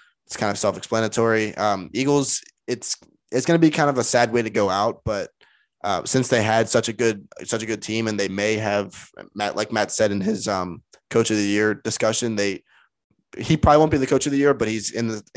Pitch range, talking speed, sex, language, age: 105-120 Hz, 240 wpm, male, English, 20-39